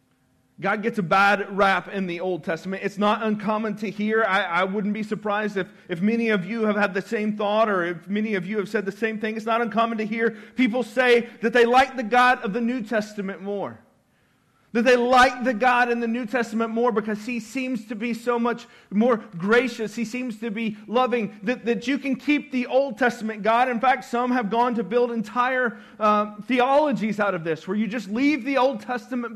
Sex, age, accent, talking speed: male, 40-59, American, 225 wpm